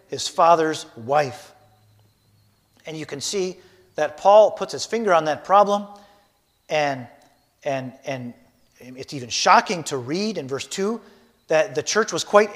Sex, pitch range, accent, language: male, 155-230 Hz, American, English